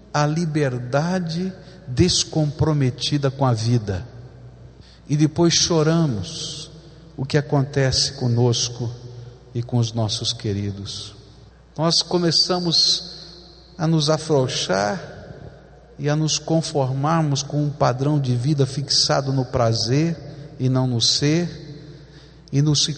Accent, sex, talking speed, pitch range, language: Brazilian, male, 110 wpm, 125-155 Hz, Portuguese